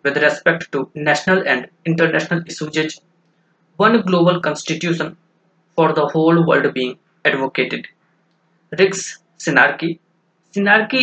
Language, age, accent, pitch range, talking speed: English, 20-39, Indian, 160-180 Hz, 105 wpm